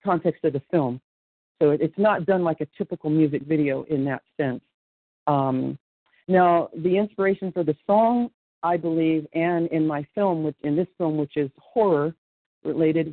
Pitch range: 145-170 Hz